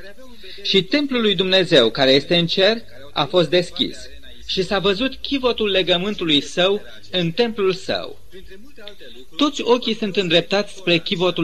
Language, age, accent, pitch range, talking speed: Romanian, 30-49, native, 165-215 Hz, 135 wpm